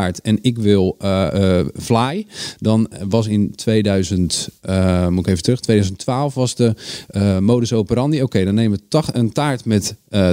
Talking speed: 180 wpm